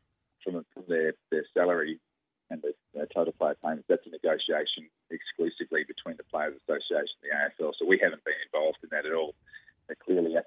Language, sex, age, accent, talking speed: English, male, 30-49, Australian, 185 wpm